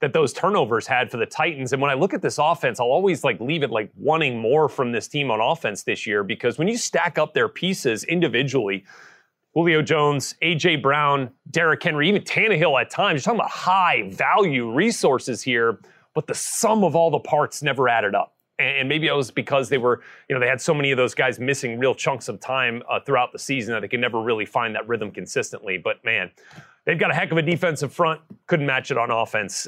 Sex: male